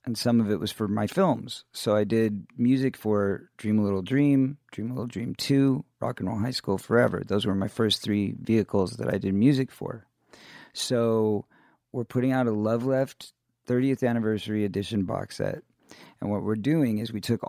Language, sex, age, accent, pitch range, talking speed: English, male, 40-59, American, 110-130 Hz, 200 wpm